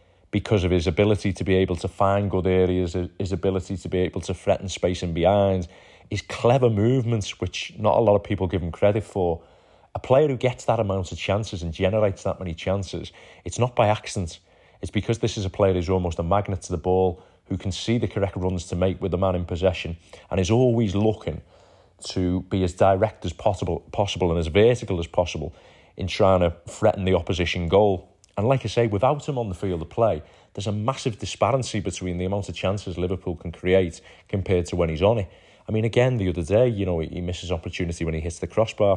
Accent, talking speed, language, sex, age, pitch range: British, 220 wpm, English, male, 30-49, 90-105 Hz